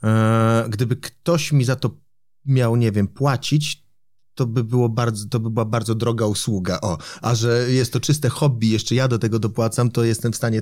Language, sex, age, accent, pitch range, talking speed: Polish, male, 30-49, native, 110-130 Hz, 205 wpm